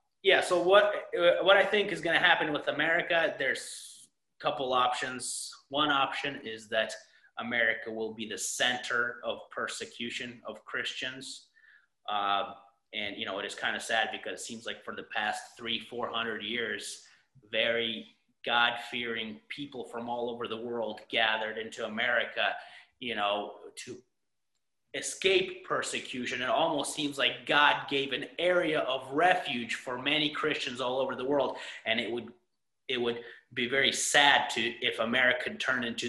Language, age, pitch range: English, 30-49, 115-155 Hz